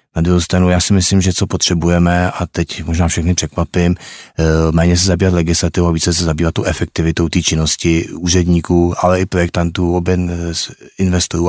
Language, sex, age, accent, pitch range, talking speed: Czech, male, 30-49, native, 85-90 Hz, 160 wpm